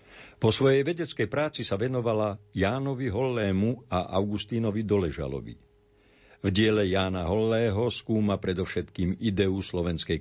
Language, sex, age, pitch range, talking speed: Slovak, male, 50-69, 95-115 Hz, 110 wpm